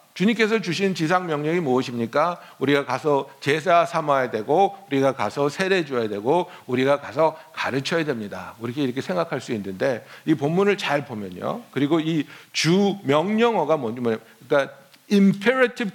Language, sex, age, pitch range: Korean, male, 60-79, 145-235 Hz